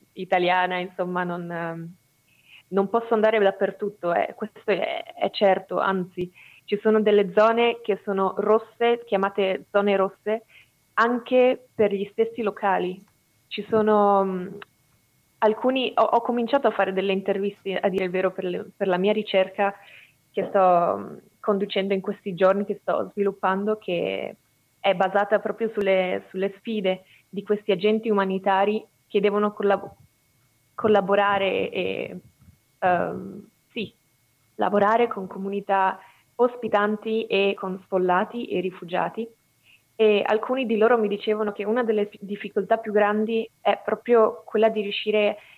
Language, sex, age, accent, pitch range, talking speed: Italian, female, 20-39, native, 190-220 Hz, 130 wpm